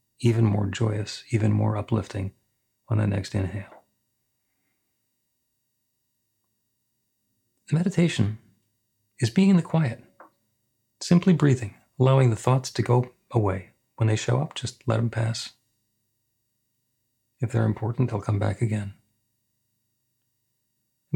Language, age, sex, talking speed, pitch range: English, 40-59, male, 115 wpm, 105-125 Hz